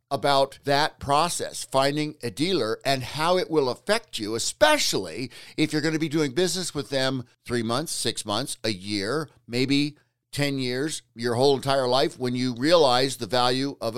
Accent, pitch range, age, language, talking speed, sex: American, 120-150 Hz, 60-79, English, 175 wpm, male